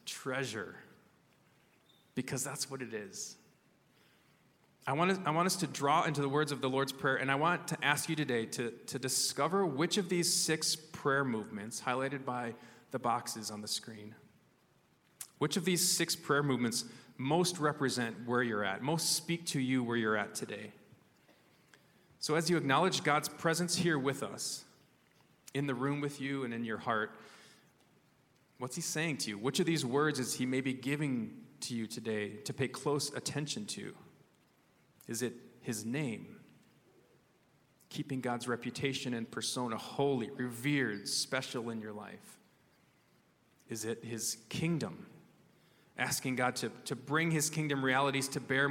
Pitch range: 125-150 Hz